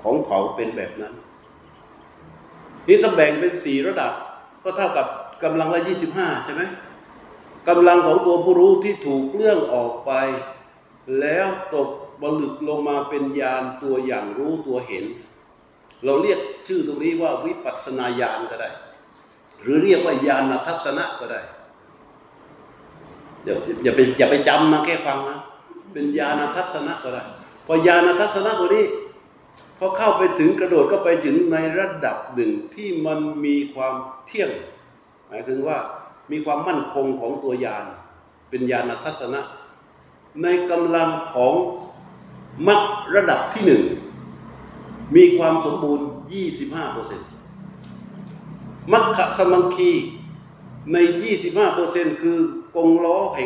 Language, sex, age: Thai, male, 60-79